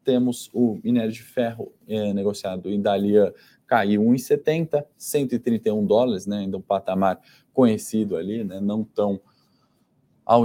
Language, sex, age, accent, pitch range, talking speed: Portuguese, male, 20-39, Brazilian, 95-115 Hz, 130 wpm